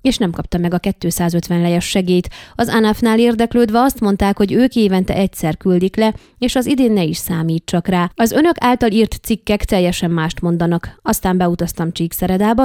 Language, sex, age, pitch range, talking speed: Hungarian, female, 30-49, 180-225 Hz, 175 wpm